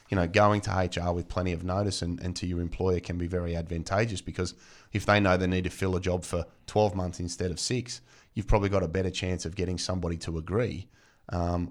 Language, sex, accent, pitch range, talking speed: English, male, Australian, 90-105 Hz, 235 wpm